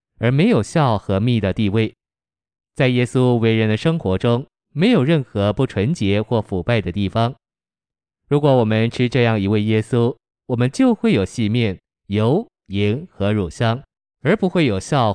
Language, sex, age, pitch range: Chinese, male, 20-39, 105-130 Hz